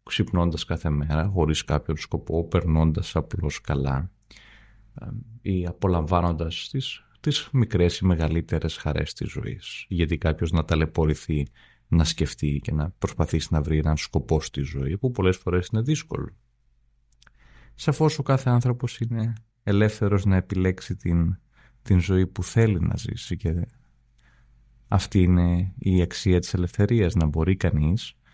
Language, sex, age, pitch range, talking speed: Greek, male, 30-49, 80-110 Hz, 135 wpm